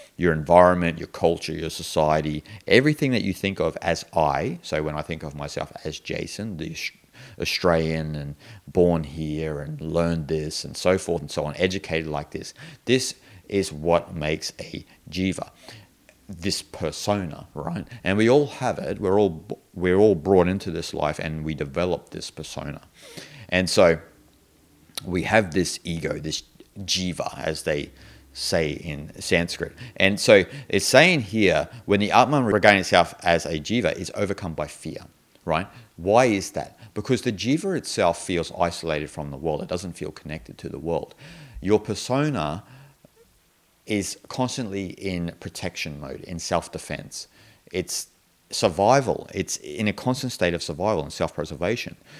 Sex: male